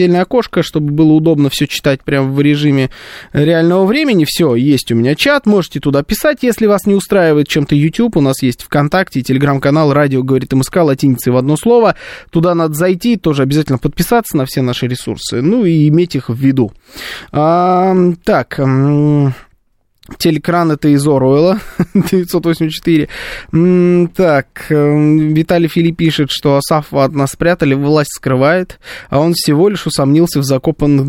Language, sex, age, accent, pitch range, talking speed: Russian, male, 20-39, native, 135-180 Hz, 150 wpm